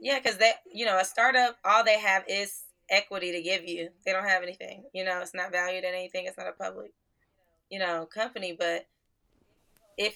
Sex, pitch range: female, 180-205 Hz